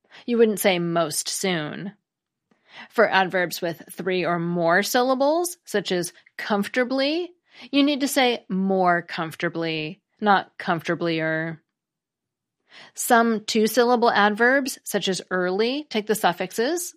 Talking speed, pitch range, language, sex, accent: 115 wpm, 175-230 Hz, English, female, American